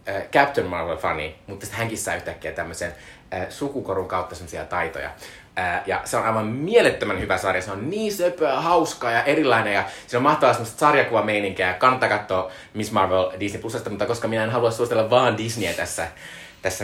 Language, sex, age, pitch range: Finnish, male, 20-39, 95-125 Hz